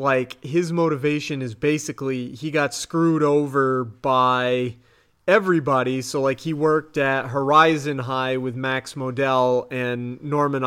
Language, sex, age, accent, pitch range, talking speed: English, male, 30-49, American, 130-160 Hz, 130 wpm